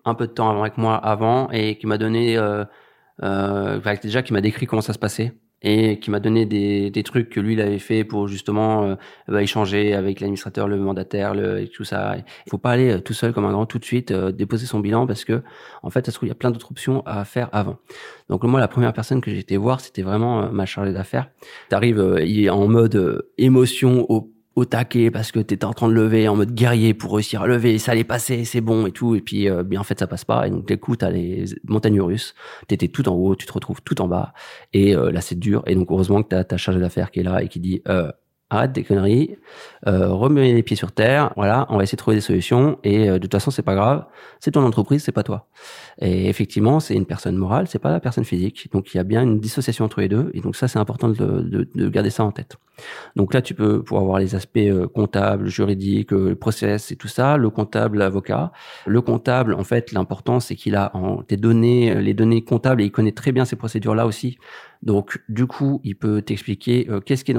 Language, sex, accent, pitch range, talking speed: French, male, French, 100-120 Hz, 250 wpm